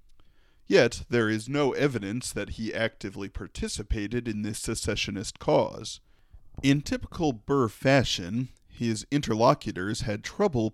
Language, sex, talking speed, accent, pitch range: English, male, 115 wpm, American, 100-125 Hz